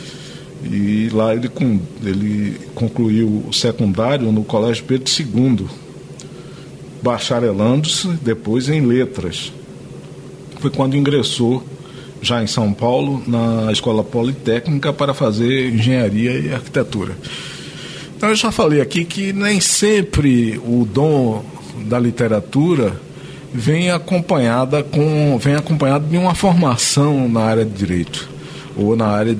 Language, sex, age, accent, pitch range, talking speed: Portuguese, male, 50-69, Brazilian, 110-145 Hz, 110 wpm